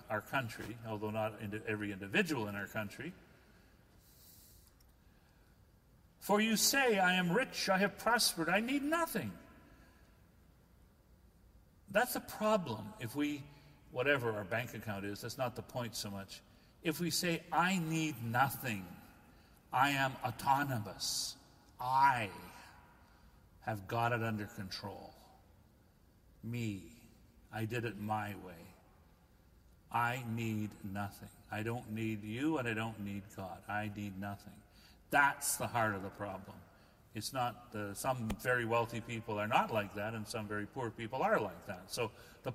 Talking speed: 140 wpm